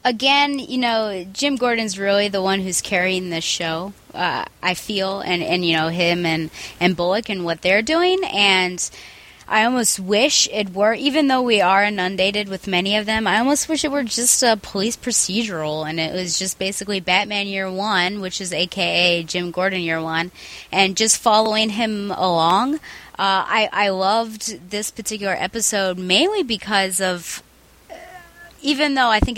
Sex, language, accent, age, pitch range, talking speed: female, English, American, 20-39, 175-215 Hz, 175 wpm